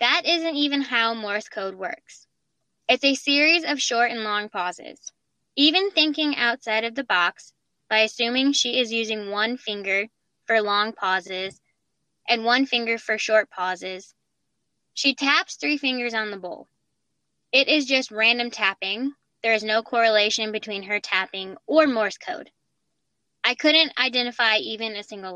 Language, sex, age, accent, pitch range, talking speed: English, female, 10-29, American, 210-260 Hz, 155 wpm